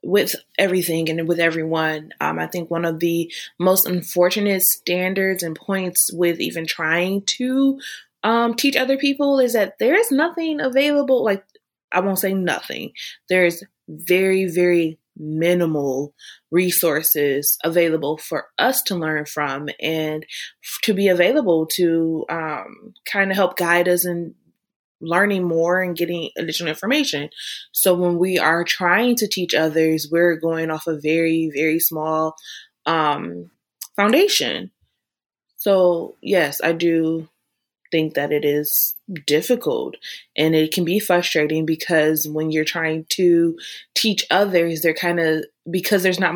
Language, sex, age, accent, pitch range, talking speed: English, female, 20-39, American, 160-195 Hz, 140 wpm